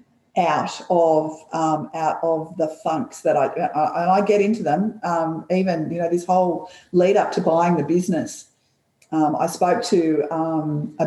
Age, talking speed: 50-69, 175 wpm